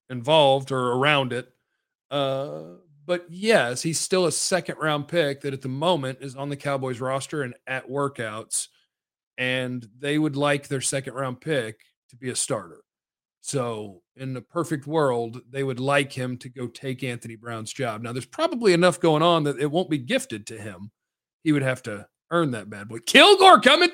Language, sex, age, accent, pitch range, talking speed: English, male, 40-59, American, 130-170 Hz, 190 wpm